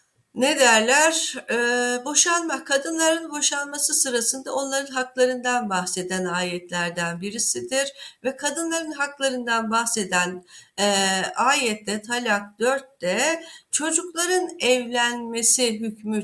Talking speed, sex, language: 85 wpm, female, Turkish